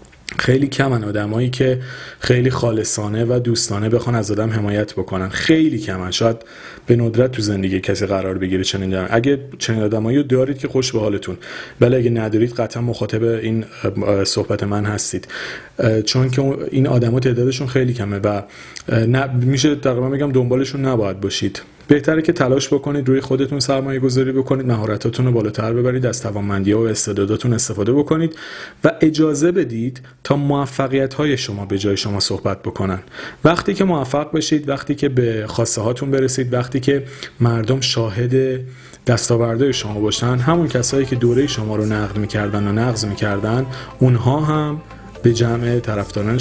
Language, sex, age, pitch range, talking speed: Persian, male, 40-59, 105-135 Hz, 160 wpm